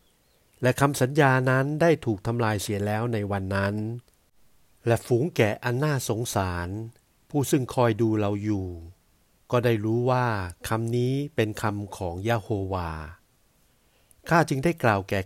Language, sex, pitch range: Thai, male, 100-125 Hz